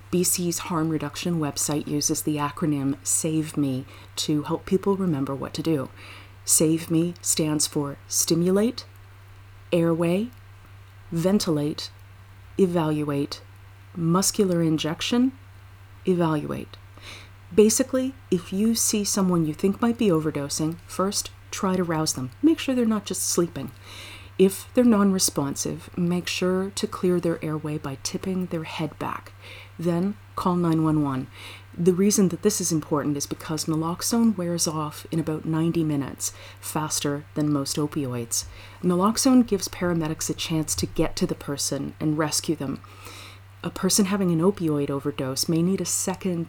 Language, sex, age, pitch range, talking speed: English, female, 30-49, 115-180 Hz, 140 wpm